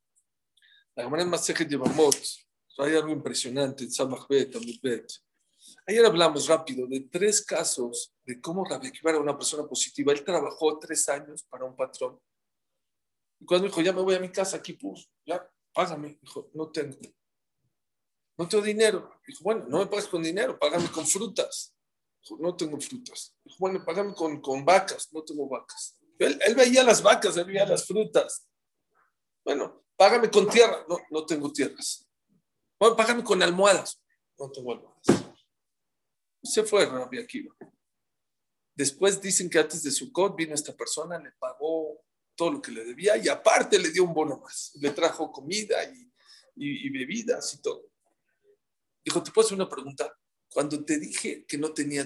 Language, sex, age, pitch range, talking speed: Spanish, male, 50-69, 150-220 Hz, 165 wpm